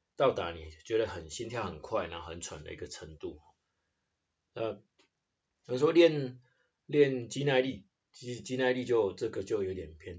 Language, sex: Chinese, male